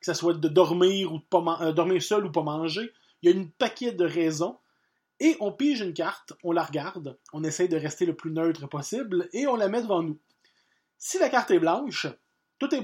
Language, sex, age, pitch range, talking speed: French, male, 30-49, 160-265 Hz, 240 wpm